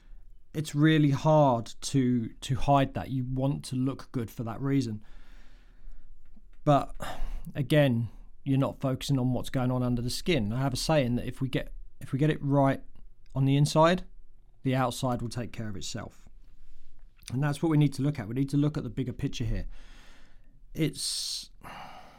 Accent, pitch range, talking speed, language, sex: British, 115-140 Hz, 185 wpm, English, male